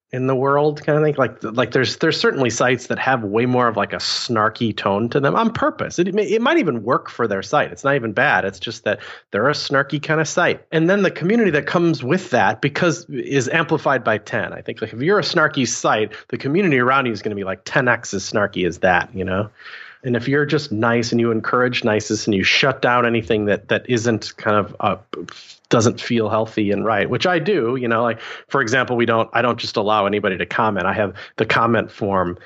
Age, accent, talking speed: 30-49, American, 245 wpm